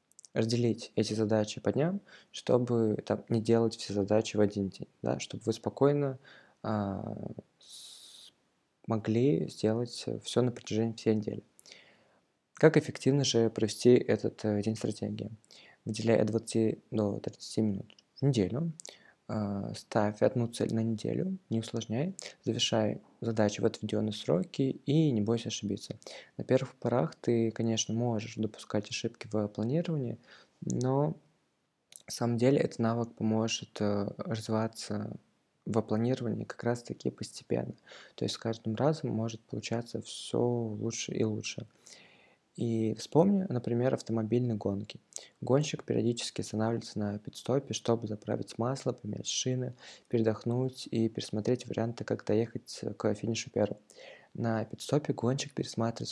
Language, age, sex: Russian, 20-39, male